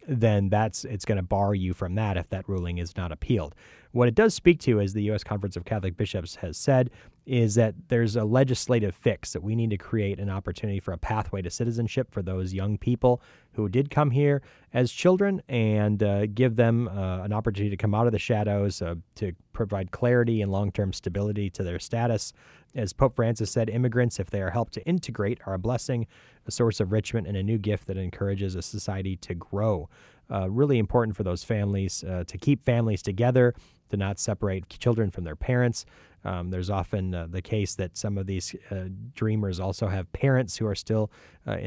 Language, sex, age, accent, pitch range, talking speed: English, male, 30-49, American, 95-115 Hz, 210 wpm